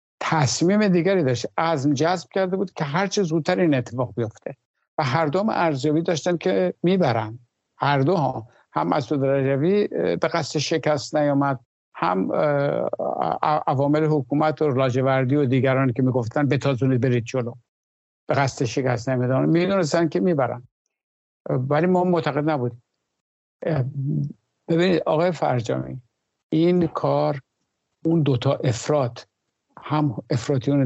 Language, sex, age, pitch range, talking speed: Persian, male, 60-79, 130-165 Hz, 130 wpm